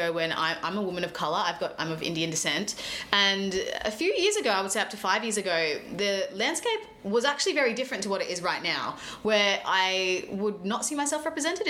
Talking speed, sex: 225 wpm, female